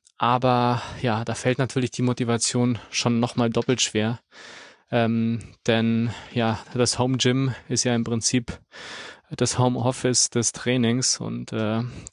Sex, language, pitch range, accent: male, German, 110-120 Hz, German